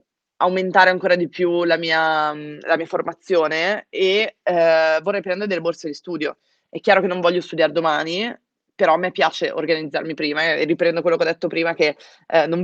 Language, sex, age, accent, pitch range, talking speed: Italian, female, 20-39, native, 160-190 Hz, 175 wpm